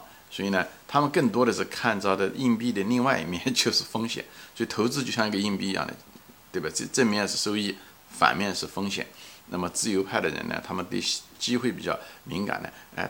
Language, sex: Chinese, male